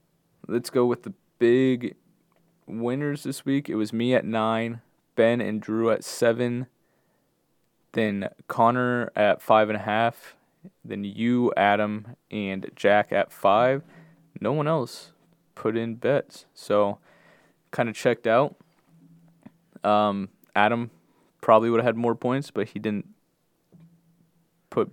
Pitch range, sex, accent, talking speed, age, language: 105-135 Hz, male, American, 125 wpm, 20-39, English